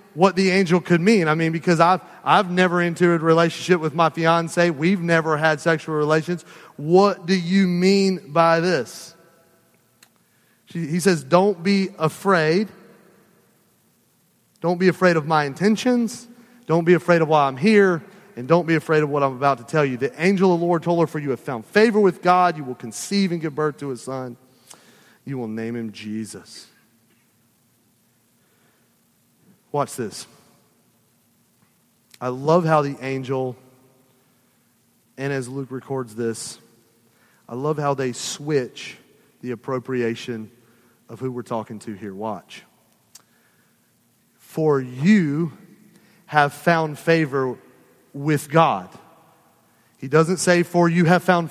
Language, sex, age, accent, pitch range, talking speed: English, male, 30-49, American, 130-180 Hz, 145 wpm